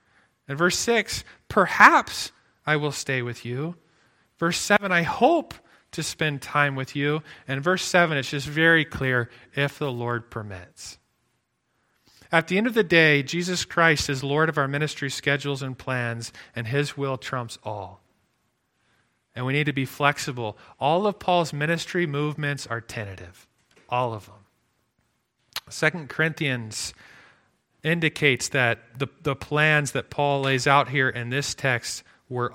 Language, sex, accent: English, male, American